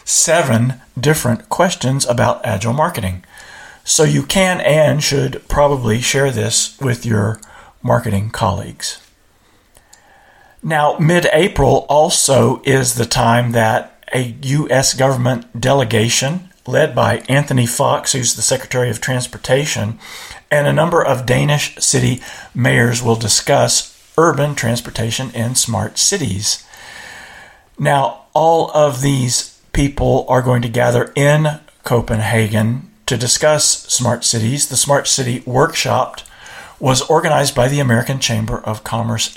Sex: male